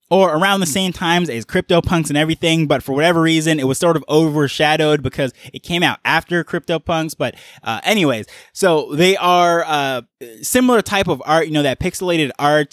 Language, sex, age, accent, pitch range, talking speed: English, male, 20-39, American, 140-175 Hz, 195 wpm